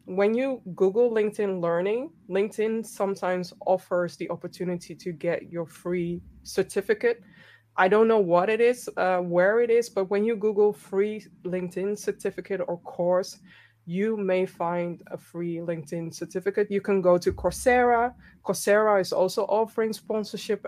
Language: English